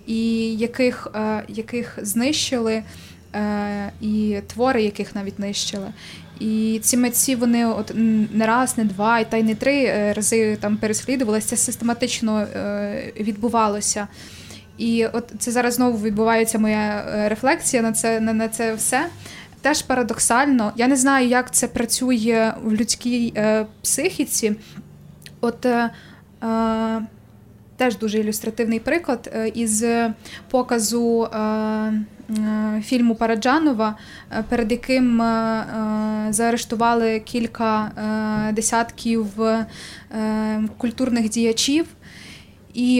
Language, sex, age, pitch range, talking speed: Ukrainian, female, 20-39, 215-245 Hz, 105 wpm